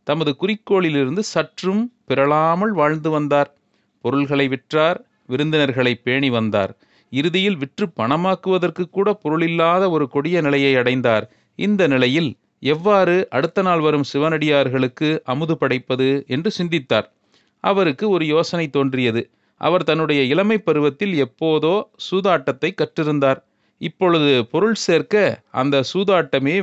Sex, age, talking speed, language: male, 30-49, 105 wpm, Tamil